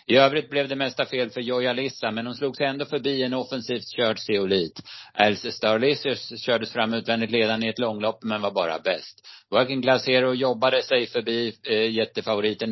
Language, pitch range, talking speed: Swedish, 110-130 Hz, 180 wpm